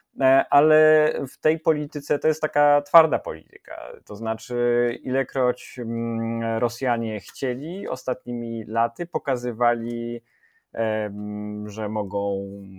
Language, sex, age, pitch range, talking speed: Polish, male, 20-39, 110-145 Hz, 90 wpm